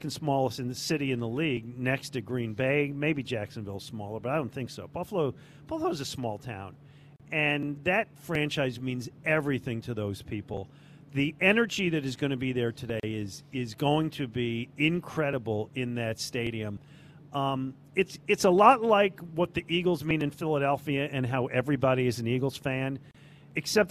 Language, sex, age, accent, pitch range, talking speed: English, male, 40-59, American, 120-155 Hz, 185 wpm